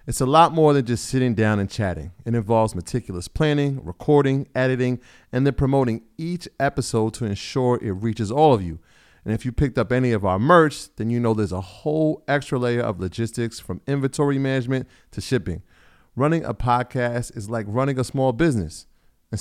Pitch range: 105-135 Hz